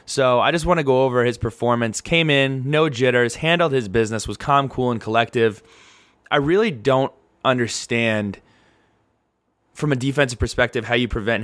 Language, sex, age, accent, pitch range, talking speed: English, male, 20-39, American, 105-125 Hz, 170 wpm